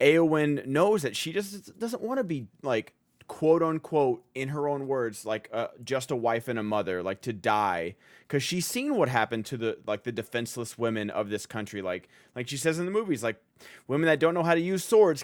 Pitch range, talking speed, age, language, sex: 115-155 Hz, 225 wpm, 30-49, English, male